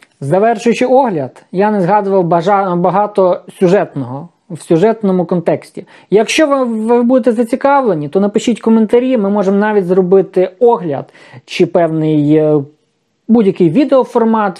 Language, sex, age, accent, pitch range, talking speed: Ukrainian, male, 20-39, native, 175-220 Hz, 110 wpm